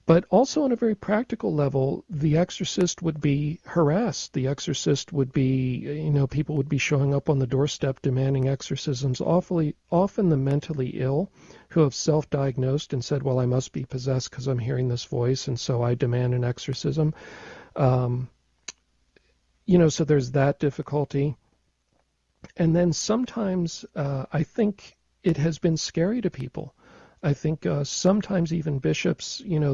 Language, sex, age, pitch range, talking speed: English, male, 50-69, 130-160 Hz, 160 wpm